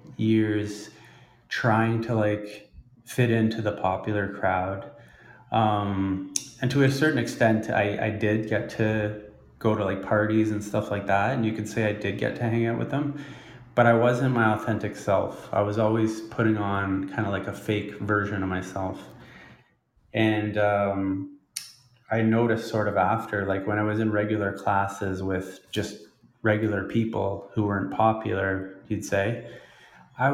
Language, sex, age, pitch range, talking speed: English, male, 20-39, 100-115 Hz, 165 wpm